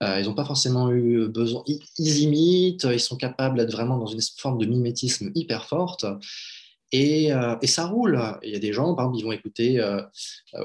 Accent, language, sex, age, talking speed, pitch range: French, French, male, 20-39, 215 wpm, 110-135 Hz